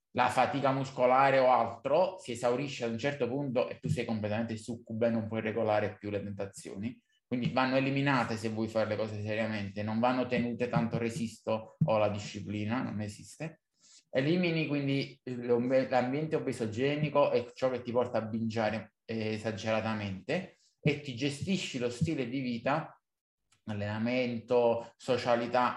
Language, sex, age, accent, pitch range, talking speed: Italian, male, 20-39, native, 115-145 Hz, 150 wpm